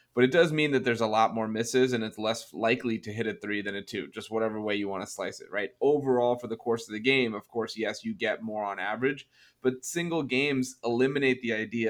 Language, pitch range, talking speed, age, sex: English, 110-125 Hz, 255 wpm, 30-49, male